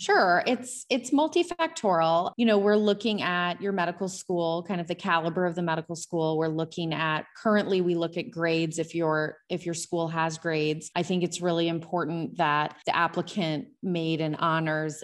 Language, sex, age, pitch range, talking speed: English, female, 20-39, 160-190 Hz, 185 wpm